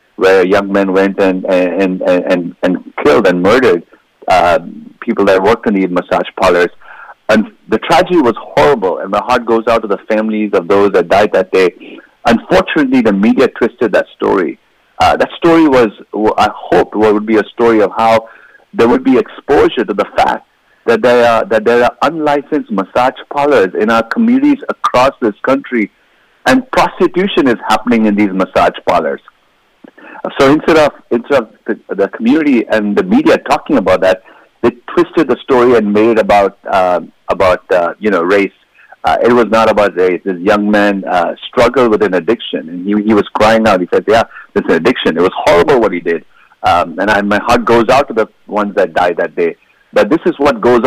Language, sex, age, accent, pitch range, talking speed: English, male, 50-69, Indian, 100-150 Hz, 195 wpm